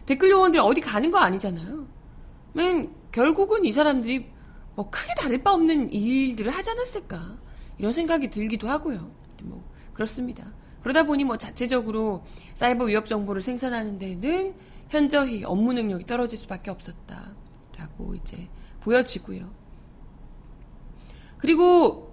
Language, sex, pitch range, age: Korean, female, 215-325 Hz, 30-49